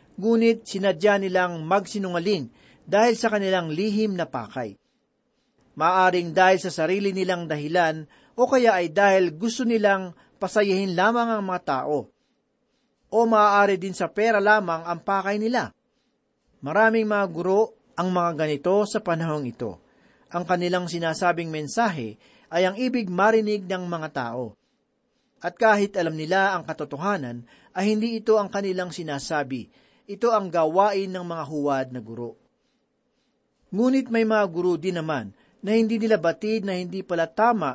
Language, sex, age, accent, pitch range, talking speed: Filipino, male, 40-59, native, 165-215 Hz, 145 wpm